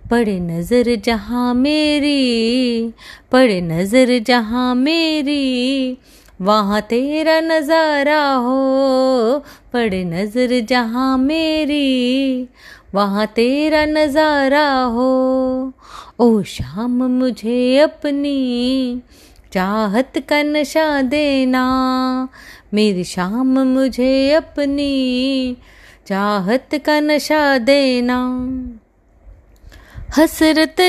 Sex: female